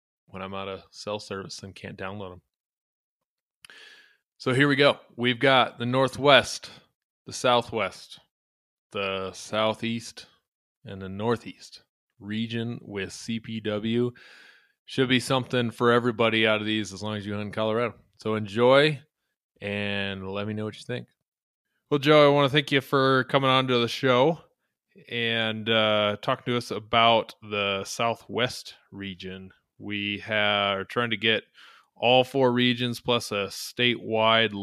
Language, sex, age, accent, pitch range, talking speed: English, male, 20-39, American, 105-125 Hz, 150 wpm